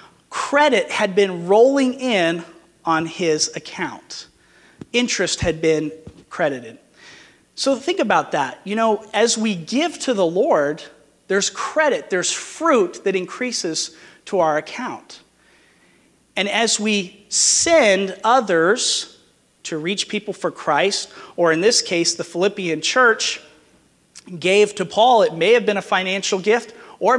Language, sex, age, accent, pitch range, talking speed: English, male, 40-59, American, 170-245 Hz, 135 wpm